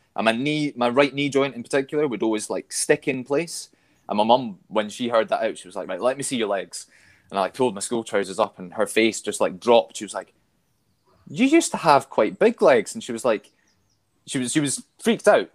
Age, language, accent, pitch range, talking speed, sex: 20-39, English, British, 100-140 Hz, 255 wpm, male